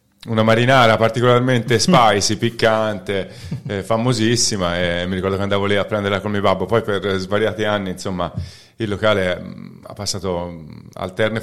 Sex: male